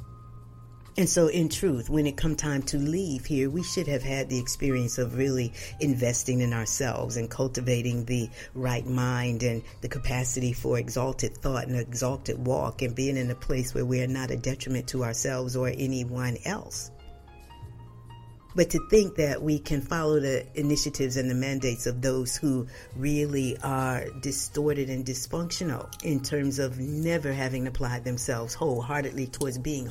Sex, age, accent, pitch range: female, 50-69, American, 125-140 Hz